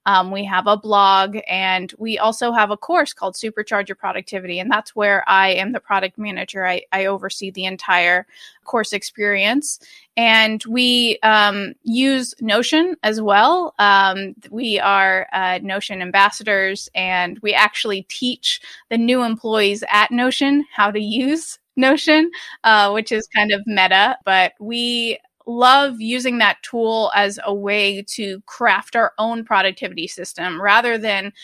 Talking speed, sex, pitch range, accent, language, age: 150 wpm, female, 190-230 Hz, American, English, 20-39